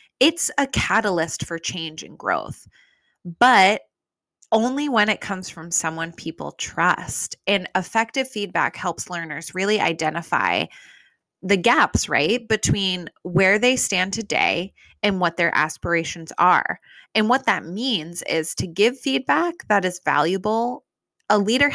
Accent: American